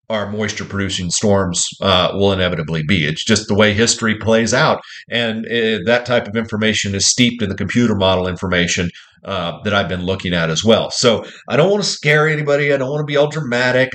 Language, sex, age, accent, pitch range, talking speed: English, male, 40-59, American, 100-130 Hz, 210 wpm